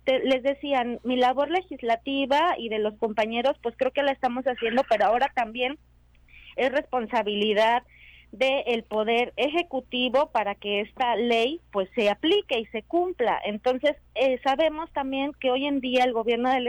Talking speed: 165 wpm